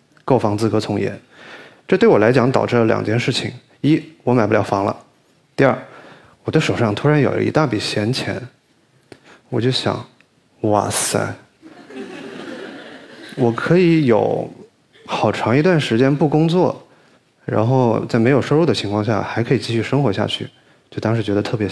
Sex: male